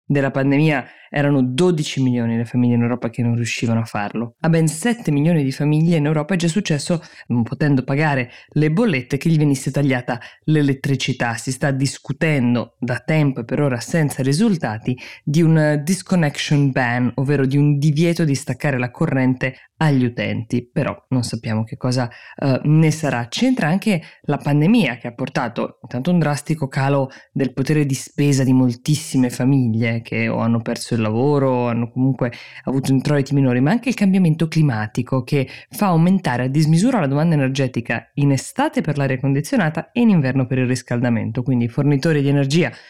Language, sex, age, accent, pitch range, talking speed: Italian, female, 20-39, native, 125-155 Hz, 175 wpm